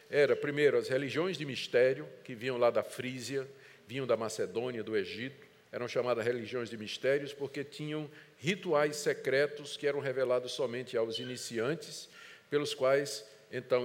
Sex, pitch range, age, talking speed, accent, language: male, 125-175 Hz, 50-69, 145 wpm, Brazilian, Portuguese